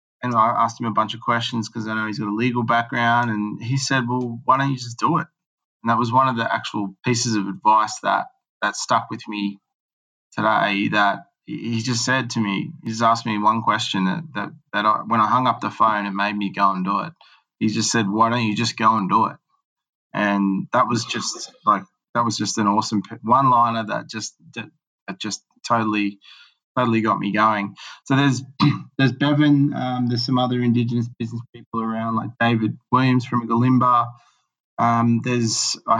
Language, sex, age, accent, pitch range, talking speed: English, male, 20-39, Australian, 110-125 Hz, 205 wpm